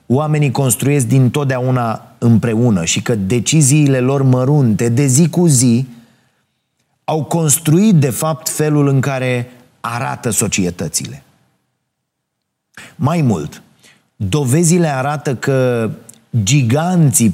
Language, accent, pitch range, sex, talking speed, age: Romanian, native, 110-145 Hz, male, 95 wpm, 30-49